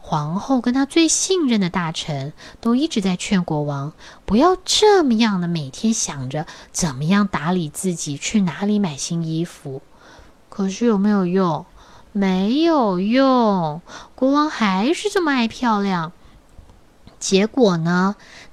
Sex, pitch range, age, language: female, 160-265 Hz, 20-39, Chinese